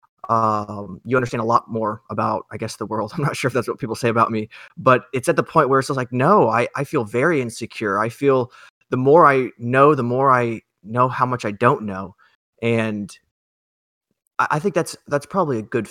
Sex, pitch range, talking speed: male, 105-125 Hz, 225 wpm